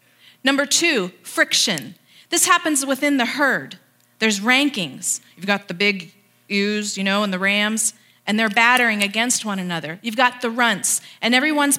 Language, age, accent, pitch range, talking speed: English, 40-59, American, 165-255 Hz, 165 wpm